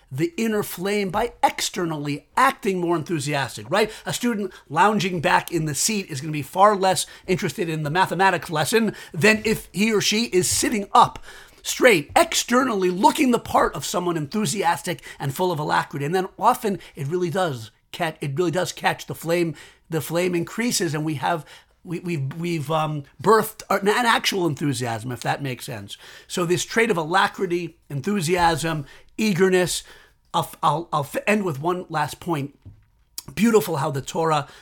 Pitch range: 155-205 Hz